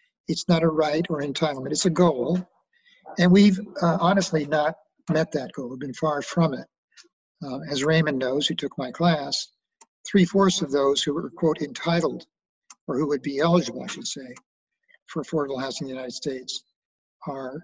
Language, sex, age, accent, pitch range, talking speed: English, male, 50-69, American, 145-190 Hz, 185 wpm